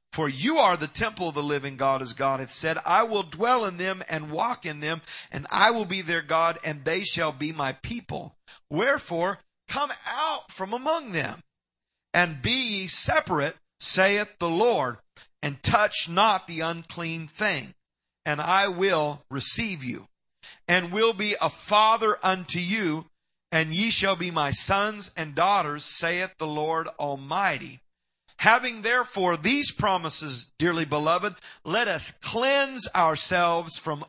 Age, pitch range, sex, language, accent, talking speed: 50-69, 150-200 Hz, male, English, American, 155 wpm